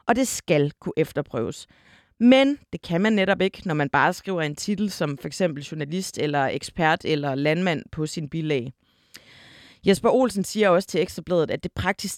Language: Danish